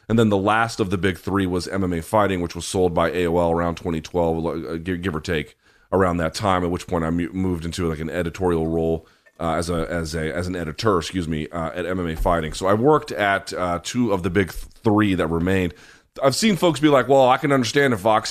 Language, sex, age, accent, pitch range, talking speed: English, male, 30-49, American, 90-115 Hz, 235 wpm